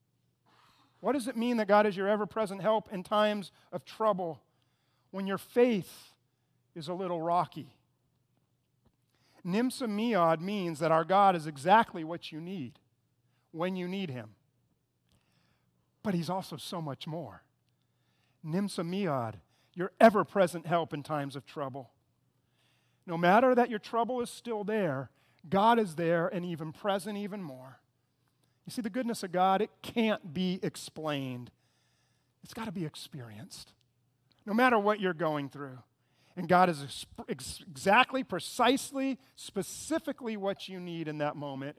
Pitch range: 130-200 Hz